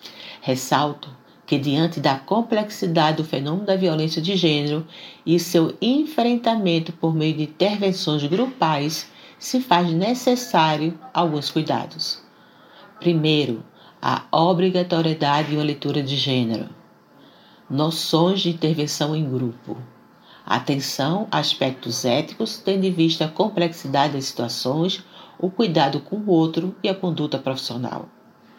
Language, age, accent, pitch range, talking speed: Portuguese, 50-69, Brazilian, 150-185 Hz, 120 wpm